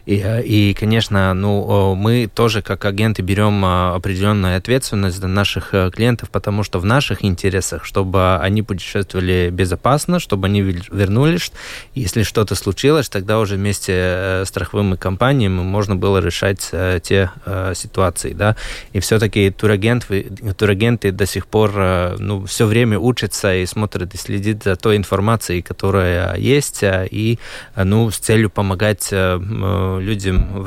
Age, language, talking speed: 20-39, Russian, 135 wpm